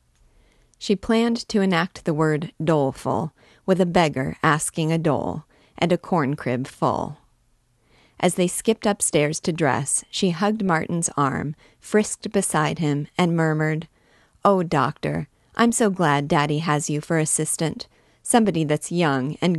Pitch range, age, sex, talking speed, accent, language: 140-175 Hz, 30-49, female, 140 wpm, American, English